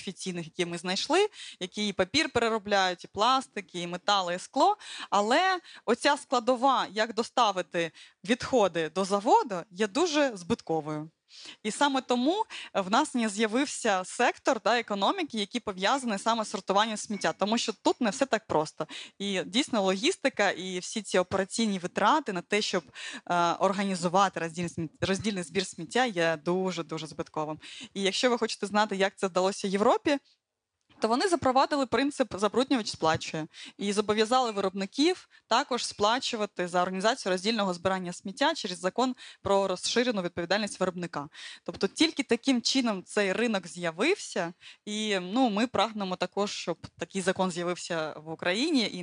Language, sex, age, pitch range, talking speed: Ukrainian, female, 20-39, 180-235 Hz, 145 wpm